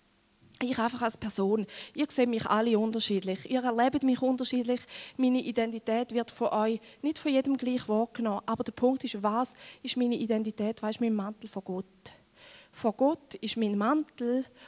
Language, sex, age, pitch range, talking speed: German, female, 20-39, 215-260 Hz, 170 wpm